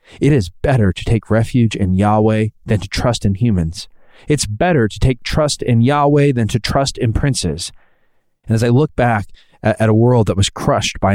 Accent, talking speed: American, 200 wpm